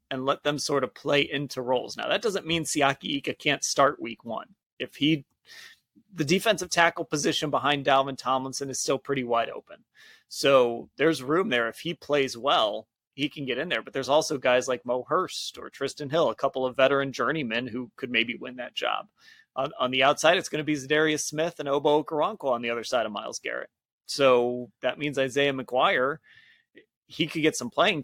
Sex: male